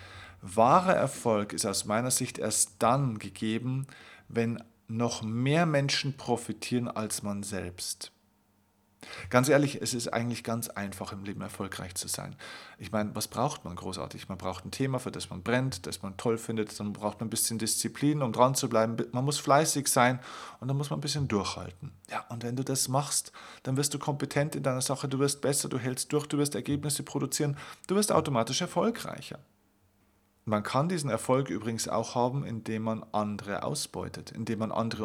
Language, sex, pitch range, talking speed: German, male, 105-135 Hz, 185 wpm